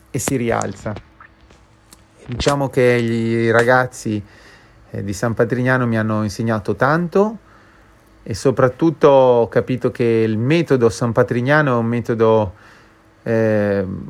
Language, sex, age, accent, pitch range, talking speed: Italian, male, 30-49, native, 110-130 Hz, 125 wpm